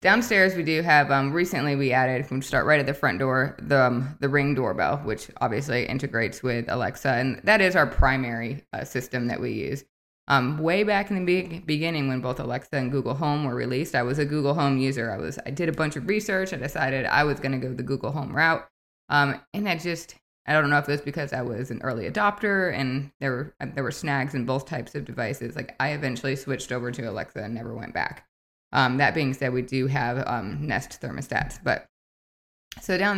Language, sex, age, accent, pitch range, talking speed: English, female, 20-39, American, 130-155 Hz, 225 wpm